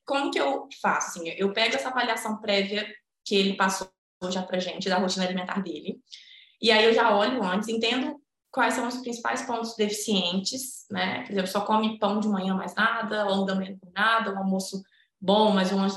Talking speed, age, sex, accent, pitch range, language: 205 wpm, 20-39, female, Brazilian, 195-240 Hz, Portuguese